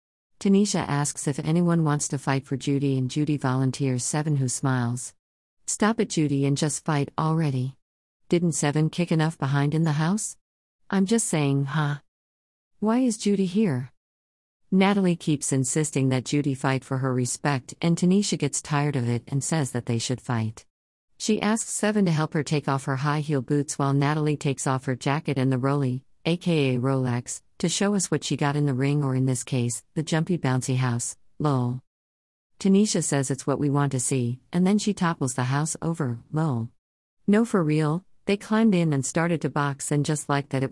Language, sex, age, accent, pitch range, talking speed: English, female, 50-69, American, 130-170 Hz, 195 wpm